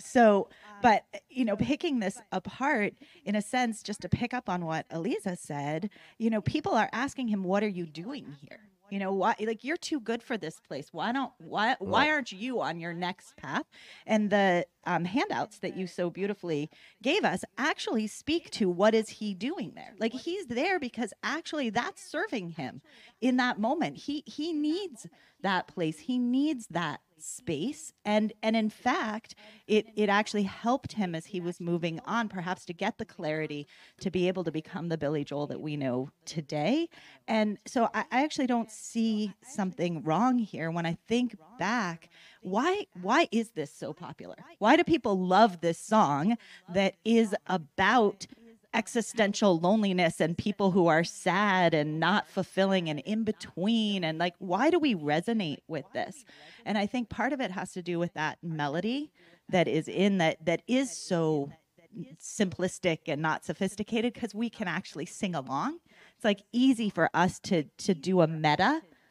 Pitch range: 175-235 Hz